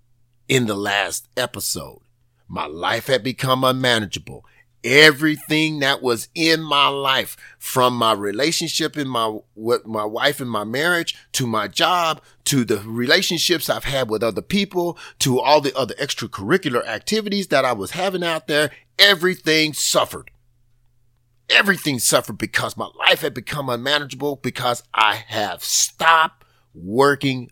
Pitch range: 120-170 Hz